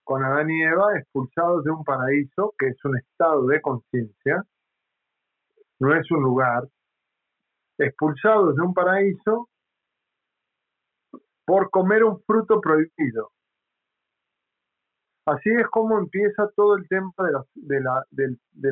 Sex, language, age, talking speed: male, Spanish, 50-69, 130 wpm